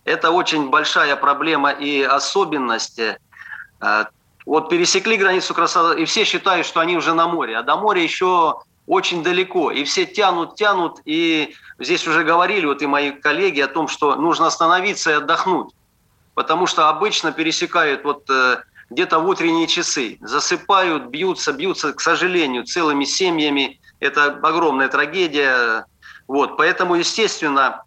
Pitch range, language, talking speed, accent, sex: 145-190 Hz, Russian, 140 wpm, native, male